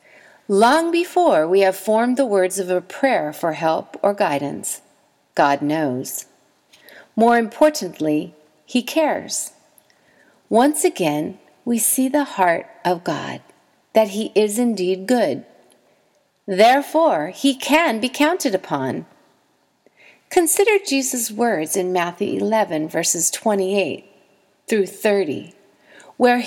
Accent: American